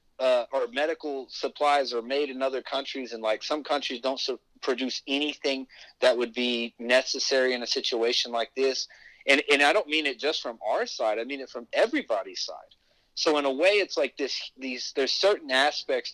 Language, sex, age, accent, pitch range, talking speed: English, male, 40-59, American, 125-155 Hz, 195 wpm